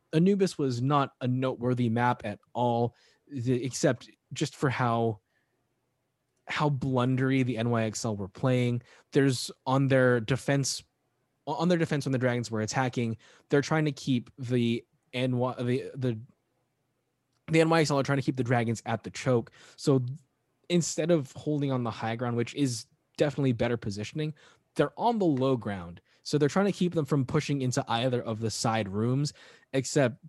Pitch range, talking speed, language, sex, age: 120-140 Hz, 165 wpm, English, male, 20-39